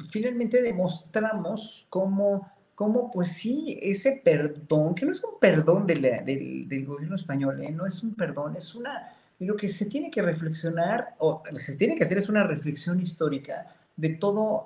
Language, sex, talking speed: Spanish, male, 170 wpm